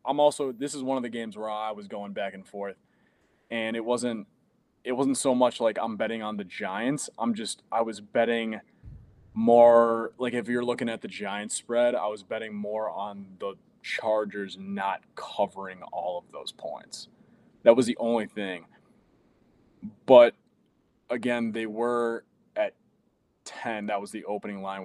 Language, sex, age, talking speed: English, male, 20-39, 170 wpm